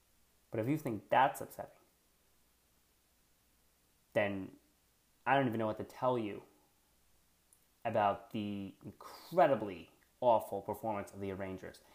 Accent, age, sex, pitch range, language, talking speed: American, 30-49, male, 75-110 Hz, English, 115 wpm